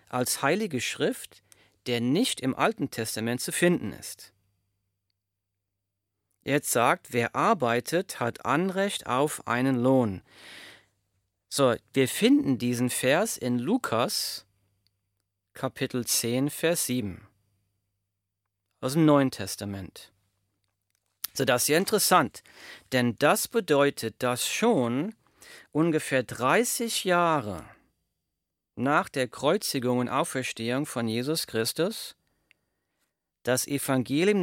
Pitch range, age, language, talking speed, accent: 110-155 Hz, 40-59, German, 100 wpm, German